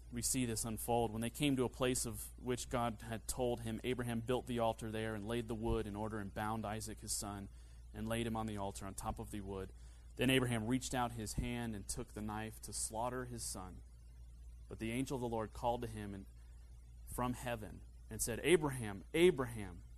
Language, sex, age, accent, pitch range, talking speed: English, male, 30-49, American, 80-120 Hz, 220 wpm